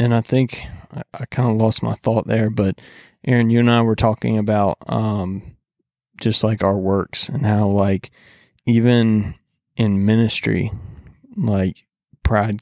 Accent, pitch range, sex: American, 100-110 Hz, male